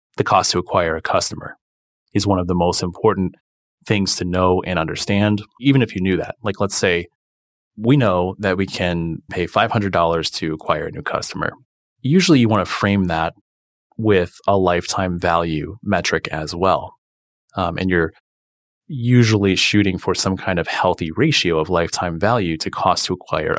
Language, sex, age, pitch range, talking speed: English, male, 30-49, 85-115 Hz, 175 wpm